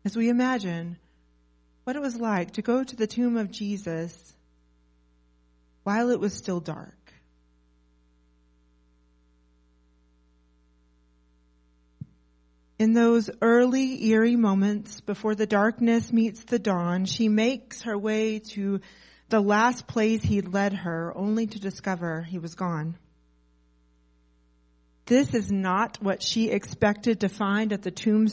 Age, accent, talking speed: 30-49, American, 125 wpm